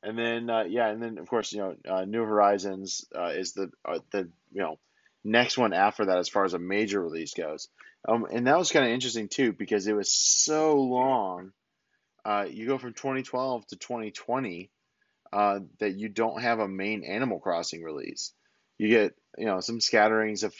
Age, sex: 30-49, male